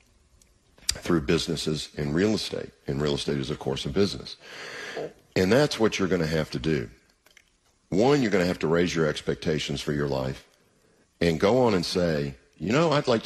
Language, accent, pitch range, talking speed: English, American, 70-90 Hz, 195 wpm